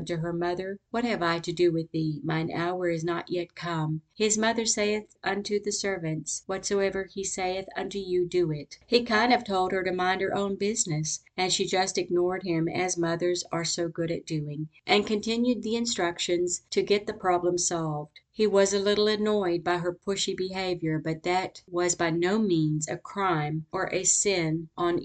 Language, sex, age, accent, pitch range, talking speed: English, female, 50-69, American, 170-190 Hz, 195 wpm